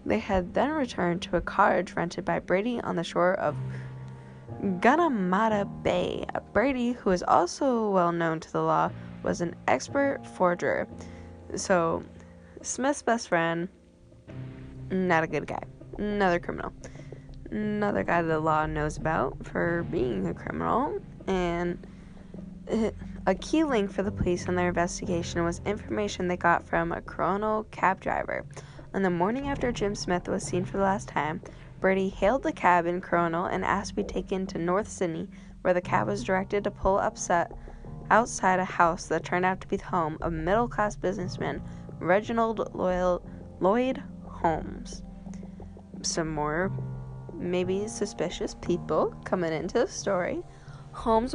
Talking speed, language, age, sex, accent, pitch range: 150 wpm, English, 10-29, female, American, 165-205 Hz